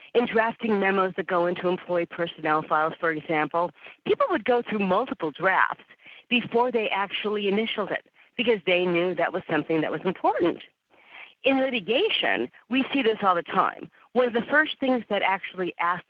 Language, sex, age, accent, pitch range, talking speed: English, female, 50-69, American, 180-235 Hz, 175 wpm